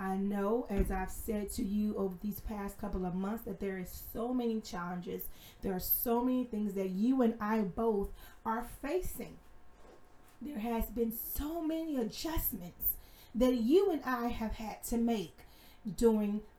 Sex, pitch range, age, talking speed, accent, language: female, 210-270 Hz, 30-49, 165 wpm, American, English